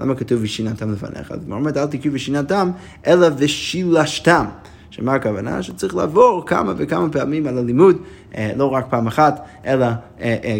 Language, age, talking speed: Hebrew, 20-39, 160 wpm